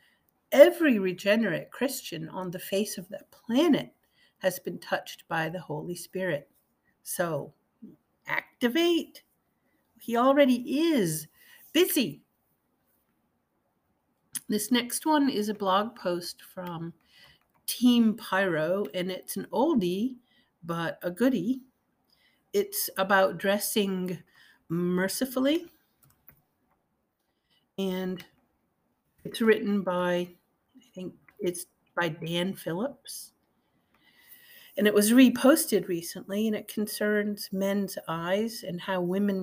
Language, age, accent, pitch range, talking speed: English, 50-69, American, 180-245 Hz, 100 wpm